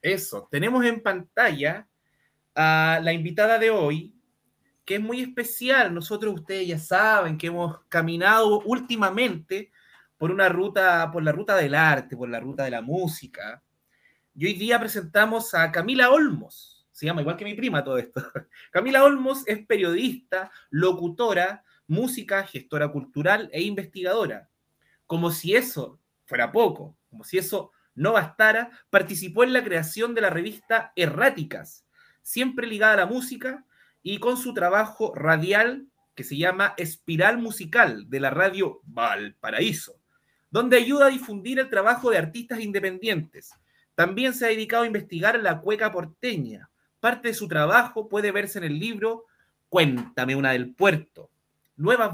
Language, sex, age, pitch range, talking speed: Spanish, male, 30-49, 170-230 Hz, 150 wpm